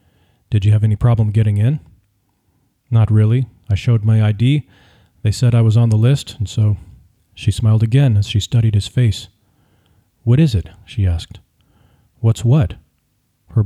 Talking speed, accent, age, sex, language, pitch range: 165 wpm, American, 40-59, male, English, 105-120 Hz